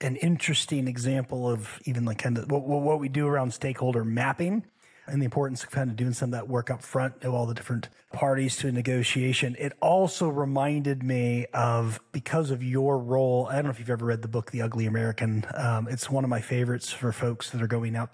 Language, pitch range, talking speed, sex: English, 120-145 Hz, 230 wpm, male